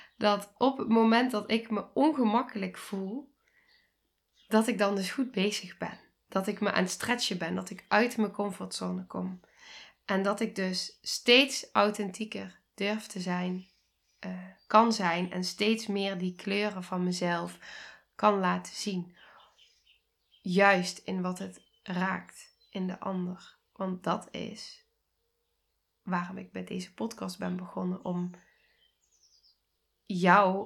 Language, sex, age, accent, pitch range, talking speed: Dutch, female, 10-29, Dutch, 180-210 Hz, 140 wpm